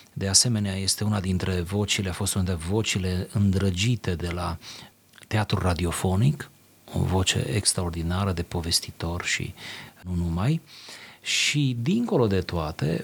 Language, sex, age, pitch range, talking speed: Romanian, male, 30-49, 90-115 Hz, 130 wpm